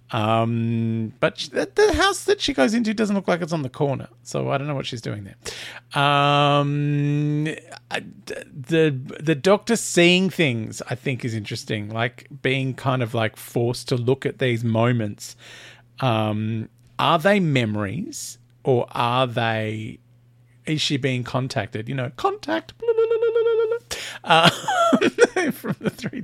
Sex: male